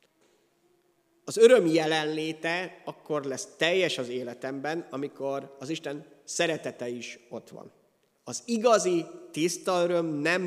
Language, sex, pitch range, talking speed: Hungarian, male, 130-175 Hz, 115 wpm